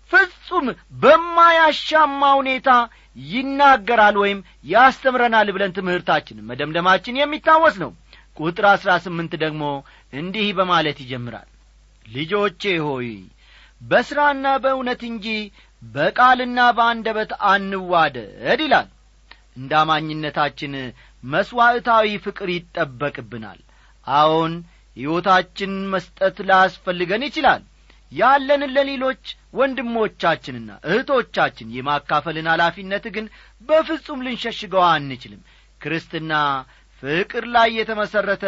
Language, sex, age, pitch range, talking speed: Amharic, male, 40-59, 155-235 Hz, 80 wpm